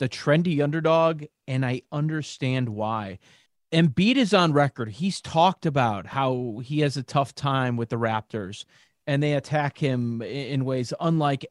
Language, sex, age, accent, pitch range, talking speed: English, male, 40-59, American, 145-220 Hz, 155 wpm